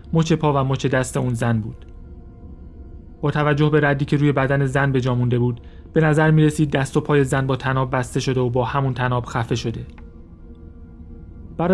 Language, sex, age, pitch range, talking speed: Persian, male, 30-49, 115-150 Hz, 190 wpm